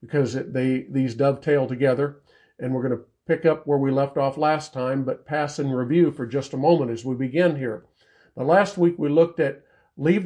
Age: 50-69